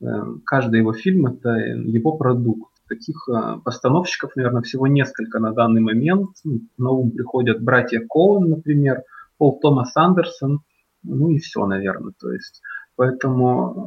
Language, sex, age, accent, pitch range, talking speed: Ukrainian, male, 20-39, native, 115-145 Hz, 140 wpm